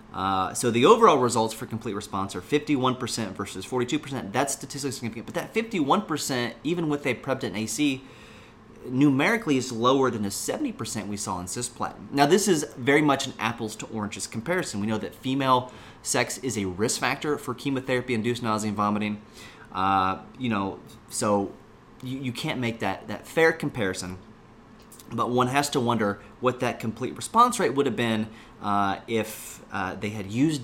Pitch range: 105-130 Hz